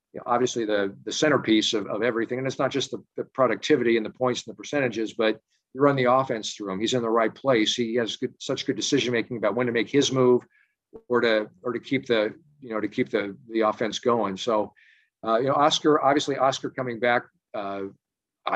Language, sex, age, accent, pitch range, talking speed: English, male, 50-69, American, 115-135 Hz, 230 wpm